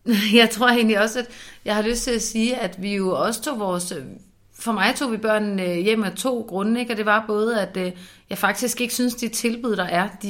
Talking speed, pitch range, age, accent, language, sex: 240 wpm, 190-230 Hz, 30-49, native, Danish, female